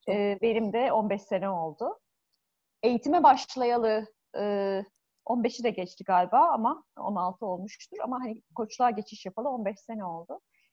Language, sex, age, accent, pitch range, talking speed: Turkish, female, 30-49, native, 195-250 Hz, 125 wpm